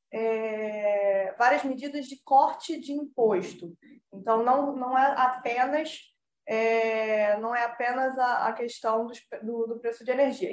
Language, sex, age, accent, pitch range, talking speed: Portuguese, female, 10-29, Brazilian, 220-275 Hz, 110 wpm